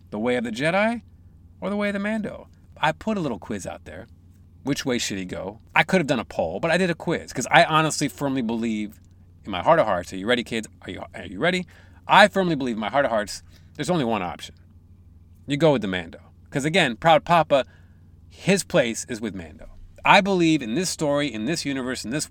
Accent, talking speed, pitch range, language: American, 235 wpm, 90-145 Hz, English